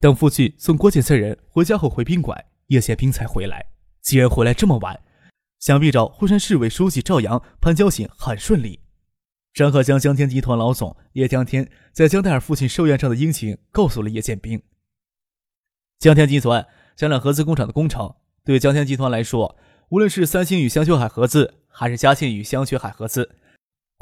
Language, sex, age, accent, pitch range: Chinese, male, 20-39, native, 120-155 Hz